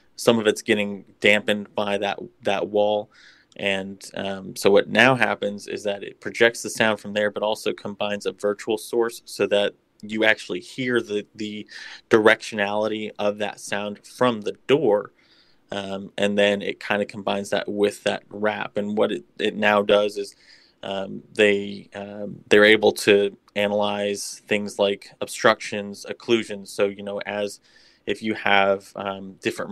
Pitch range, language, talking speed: 100-105 Hz, English, 165 wpm